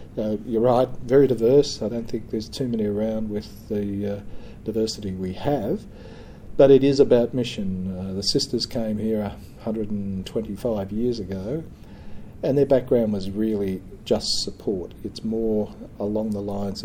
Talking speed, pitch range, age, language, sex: 155 wpm, 100-115 Hz, 40-59, English, male